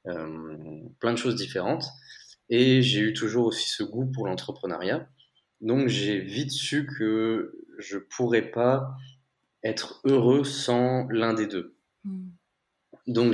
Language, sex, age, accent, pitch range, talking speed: French, male, 20-39, French, 95-125 Hz, 130 wpm